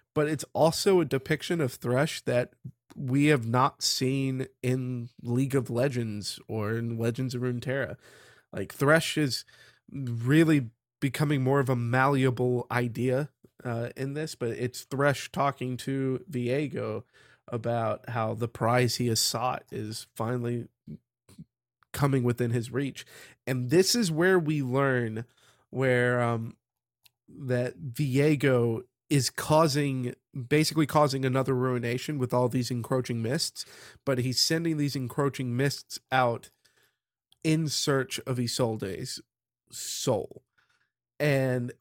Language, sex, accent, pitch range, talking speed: English, male, American, 120-145 Hz, 125 wpm